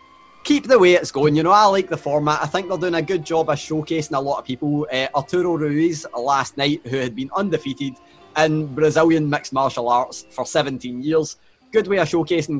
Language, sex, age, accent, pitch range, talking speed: English, male, 20-39, British, 135-170 Hz, 215 wpm